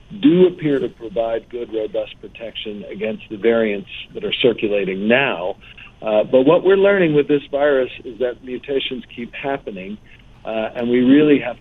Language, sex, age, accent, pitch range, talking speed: English, male, 50-69, American, 115-145 Hz, 165 wpm